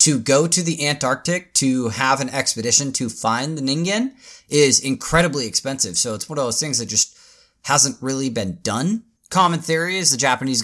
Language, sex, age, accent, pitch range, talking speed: English, male, 30-49, American, 115-150 Hz, 185 wpm